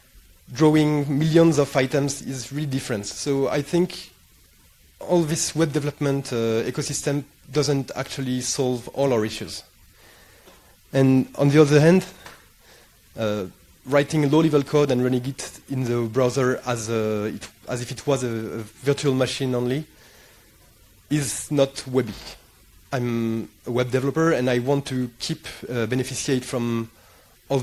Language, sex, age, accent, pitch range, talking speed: English, male, 30-49, French, 115-145 Hz, 145 wpm